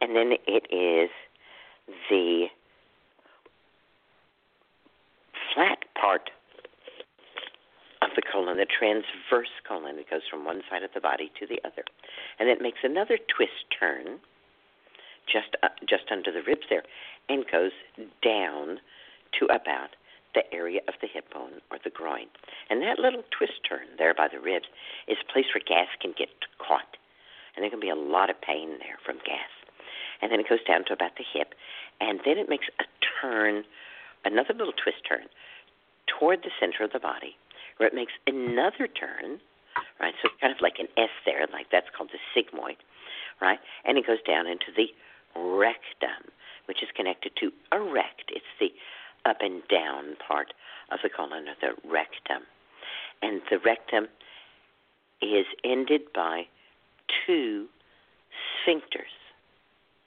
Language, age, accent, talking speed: English, 50-69, American, 155 wpm